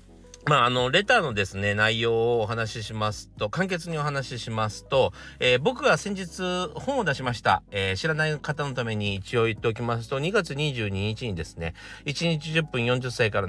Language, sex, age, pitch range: Japanese, male, 40-59, 100-170 Hz